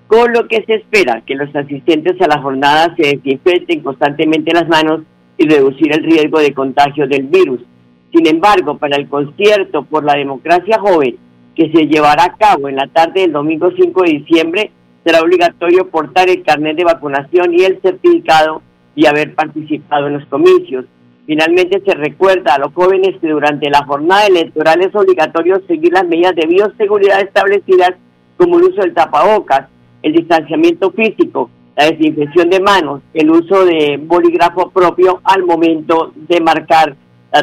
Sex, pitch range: female, 145-180 Hz